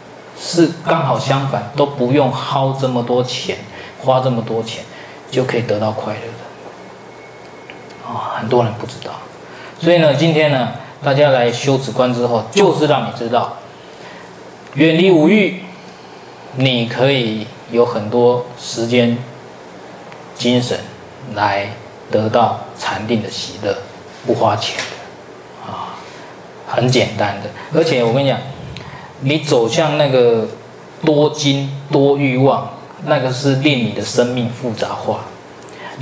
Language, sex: Chinese, male